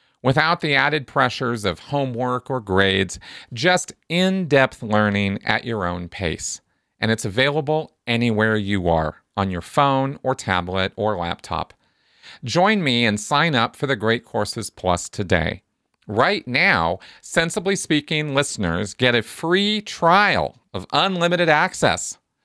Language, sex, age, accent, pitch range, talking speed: English, male, 40-59, American, 105-150 Hz, 135 wpm